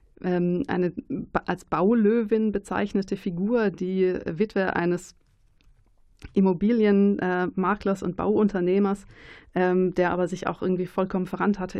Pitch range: 175-195 Hz